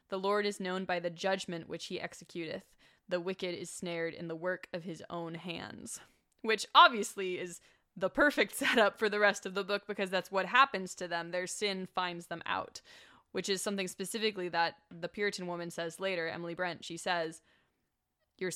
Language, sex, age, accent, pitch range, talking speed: English, female, 20-39, American, 180-210 Hz, 190 wpm